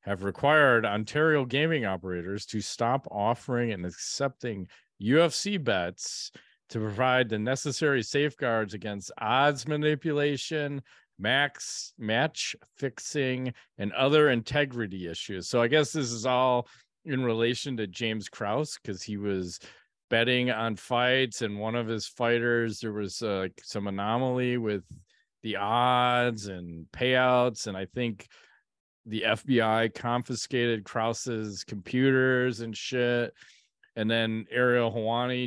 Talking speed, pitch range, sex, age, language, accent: 120 wpm, 105-135 Hz, male, 40-59, English, American